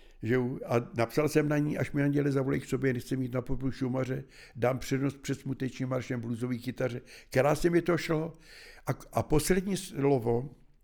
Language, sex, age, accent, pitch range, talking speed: Czech, male, 60-79, native, 120-150 Hz, 175 wpm